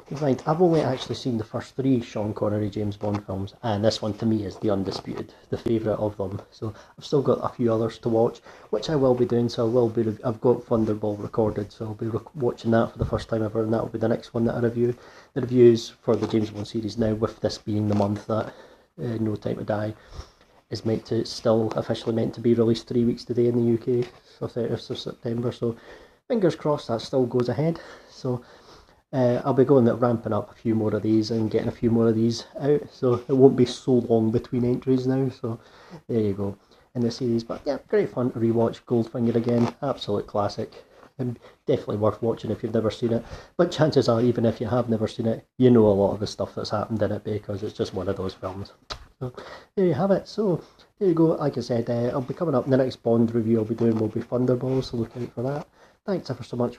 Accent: British